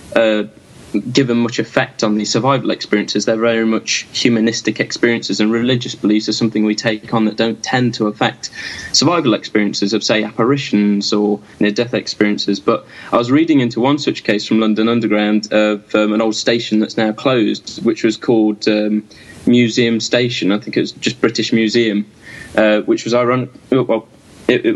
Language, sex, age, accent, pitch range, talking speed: English, male, 10-29, British, 110-125 Hz, 170 wpm